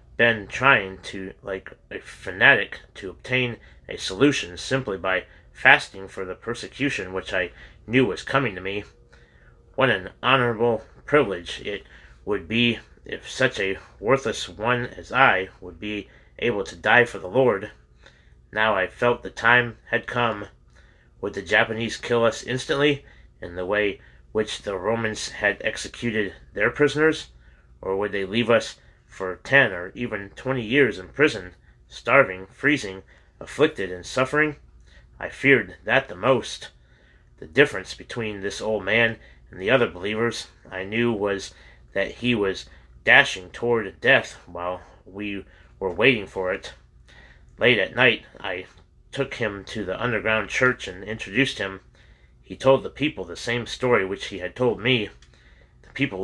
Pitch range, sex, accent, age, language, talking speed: 90-120 Hz, male, American, 30-49, English, 155 wpm